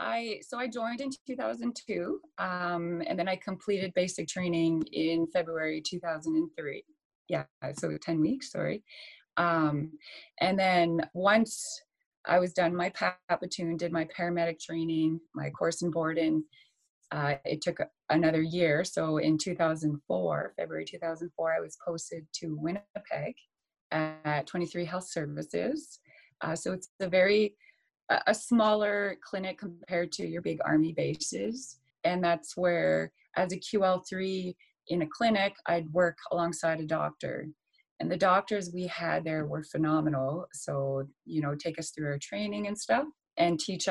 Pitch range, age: 160-195 Hz, 30-49